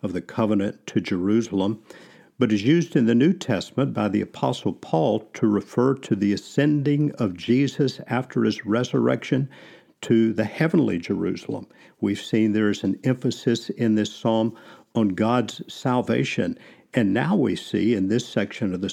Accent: American